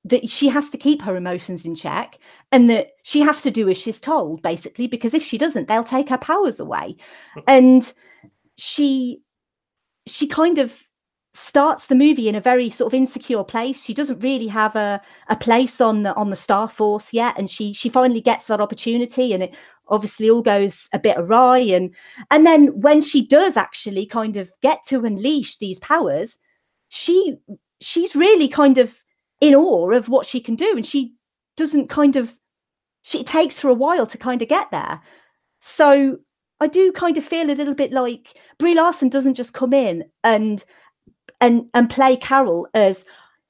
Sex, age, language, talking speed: female, 30-49, English, 190 wpm